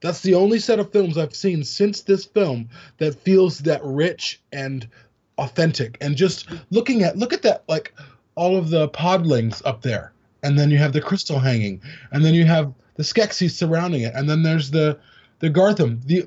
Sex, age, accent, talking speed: male, 20-39, American, 195 wpm